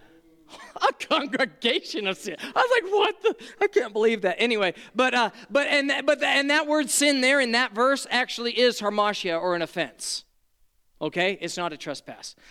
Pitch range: 185-260 Hz